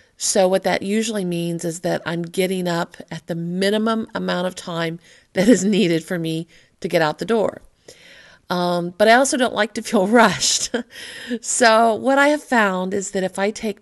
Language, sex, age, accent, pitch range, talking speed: English, female, 50-69, American, 180-220 Hz, 195 wpm